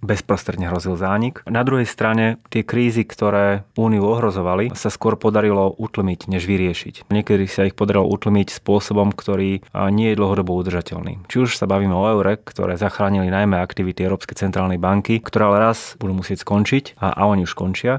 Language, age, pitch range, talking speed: Slovak, 30-49, 95-110 Hz, 175 wpm